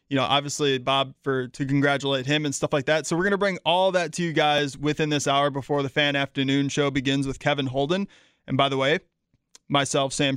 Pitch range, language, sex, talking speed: 135-155 Hz, English, male, 230 wpm